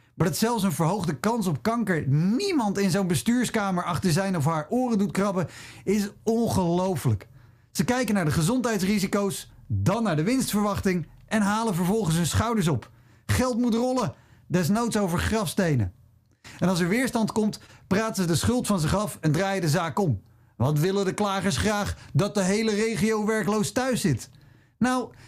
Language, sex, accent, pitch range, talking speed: Dutch, male, Dutch, 135-210 Hz, 170 wpm